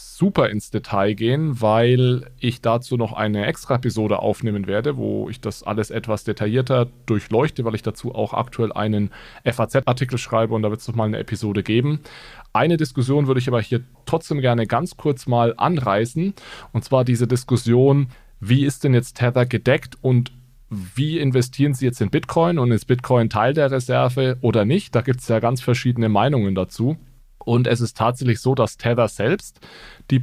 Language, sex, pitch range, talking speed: German, male, 115-130 Hz, 175 wpm